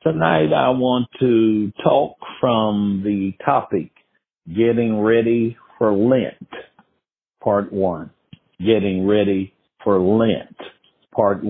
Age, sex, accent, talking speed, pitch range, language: 60-79, male, American, 100 wpm, 95-115 Hz, English